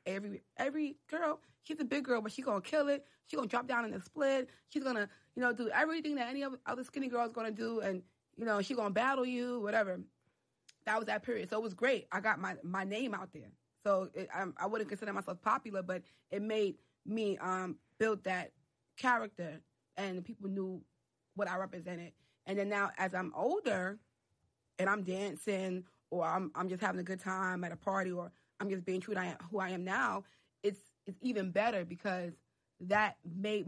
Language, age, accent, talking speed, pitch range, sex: English, 20-39, American, 205 wpm, 185-230 Hz, female